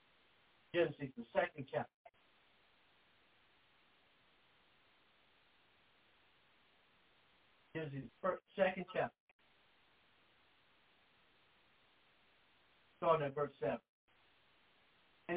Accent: American